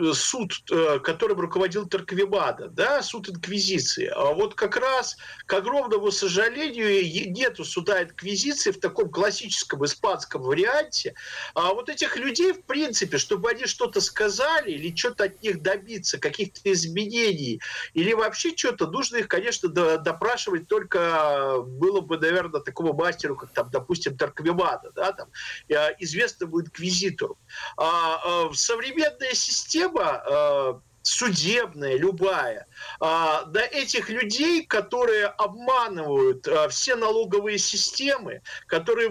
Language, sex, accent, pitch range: Russian, male, native, 180-280 Hz